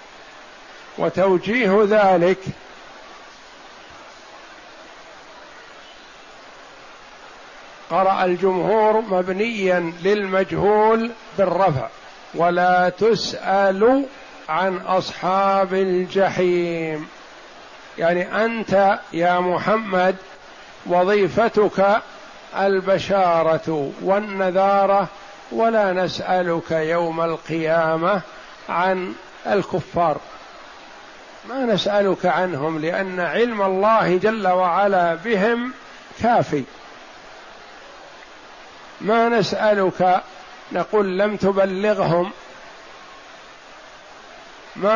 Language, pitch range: Arabic, 180-210 Hz